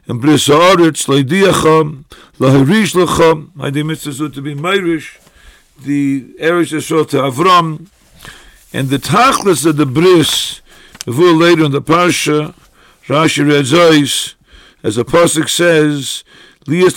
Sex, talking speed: male, 125 wpm